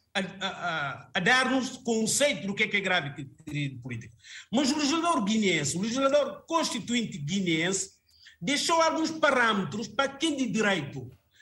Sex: male